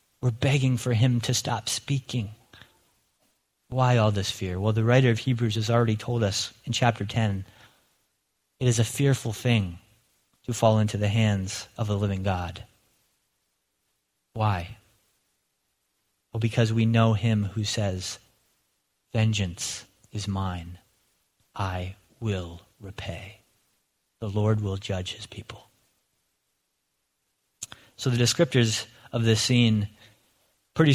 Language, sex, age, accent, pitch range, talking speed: English, male, 30-49, American, 105-125 Hz, 125 wpm